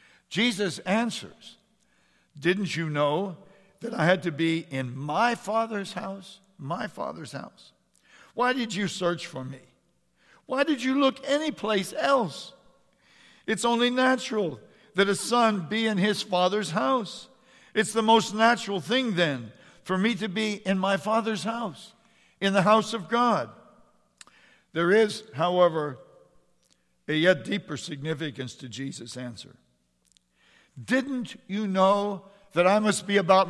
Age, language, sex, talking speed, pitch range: 60-79, English, male, 140 wpm, 165-220 Hz